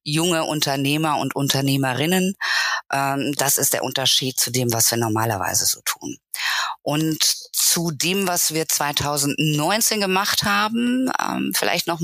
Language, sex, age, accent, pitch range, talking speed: German, female, 20-39, German, 145-180 Hz, 125 wpm